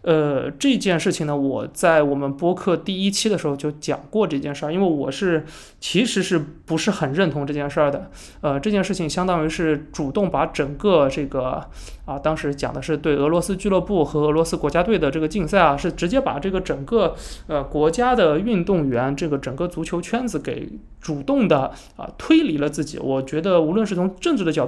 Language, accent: Chinese, native